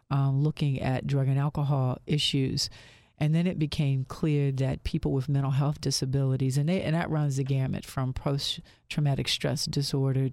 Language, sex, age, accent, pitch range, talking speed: English, female, 40-59, American, 135-150 Hz, 170 wpm